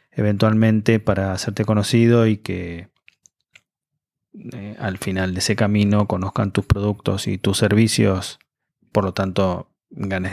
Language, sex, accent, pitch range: Spanish, male, Argentinian, 105-125 Hz